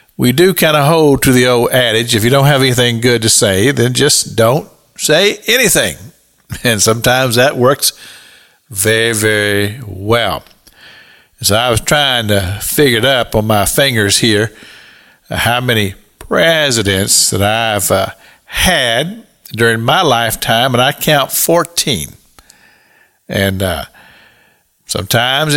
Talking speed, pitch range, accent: 140 wpm, 105-140 Hz, American